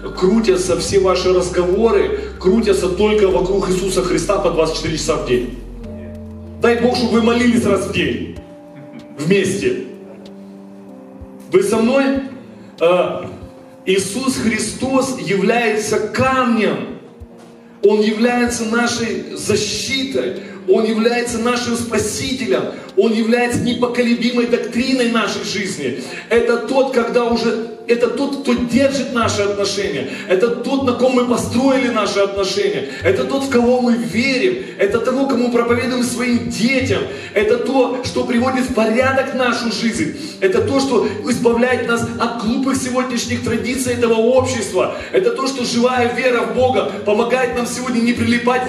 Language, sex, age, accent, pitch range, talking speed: Russian, male, 30-49, native, 205-250 Hz, 130 wpm